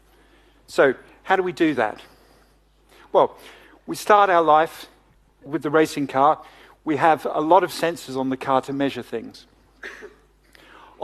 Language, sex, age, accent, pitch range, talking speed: English, male, 50-69, British, 135-165 Hz, 145 wpm